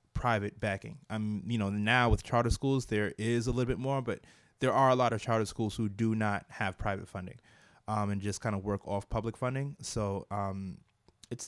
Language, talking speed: English, 215 wpm